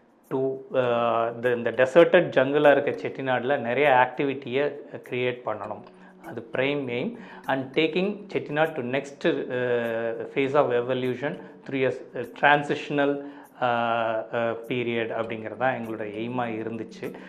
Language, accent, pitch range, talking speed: Tamil, native, 120-150 Hz, 100 wpm